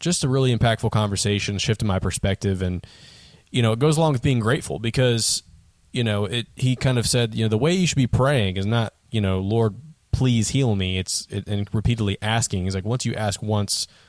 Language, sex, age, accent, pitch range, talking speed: English, male, 20-39, American, 95-120 Hz, 220 wpm